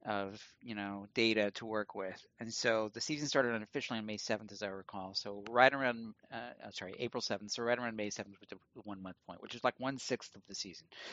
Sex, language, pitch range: male, English, 100-120 Hz